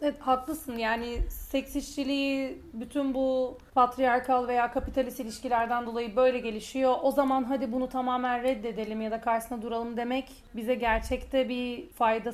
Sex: female